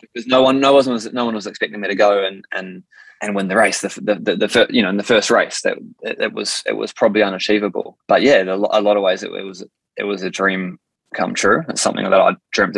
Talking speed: 270 wpm